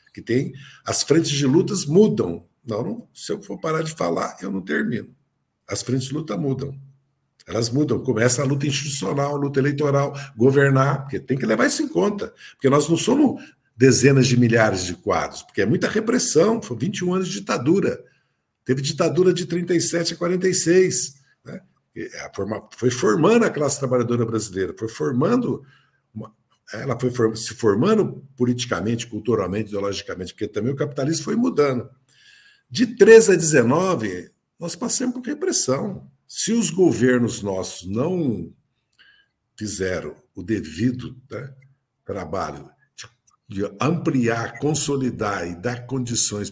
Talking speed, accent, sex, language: 140 wpm, Brazilian, male, Portuguese